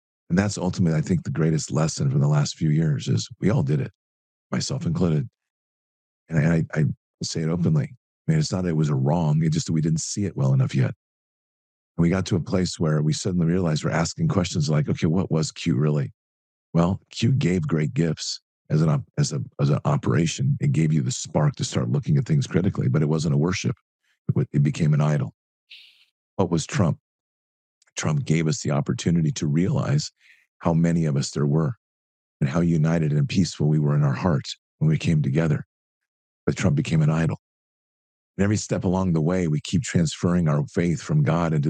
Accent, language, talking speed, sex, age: American, English, 210 wpm, male, 50-69